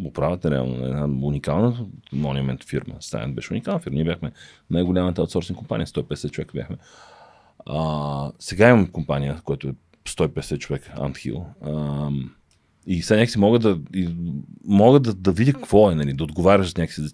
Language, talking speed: Bulgarian, 160 wpm